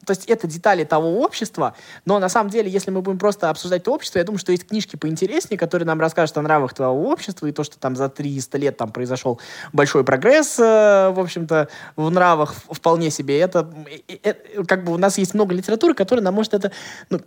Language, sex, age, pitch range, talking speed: Russian, male, 20-39, 155-200 Hz, 220 wpm